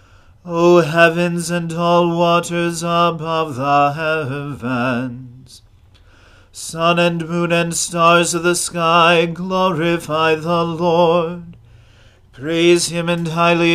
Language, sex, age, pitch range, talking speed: English, male, 40-59, 125-170 Hz, 100 wpm